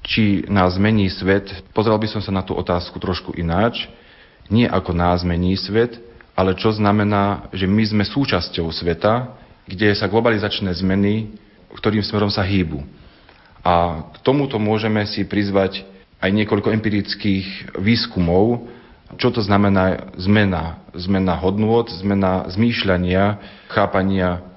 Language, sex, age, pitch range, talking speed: Slovak, male, 40-59, 90-105 Hz, 130 wpm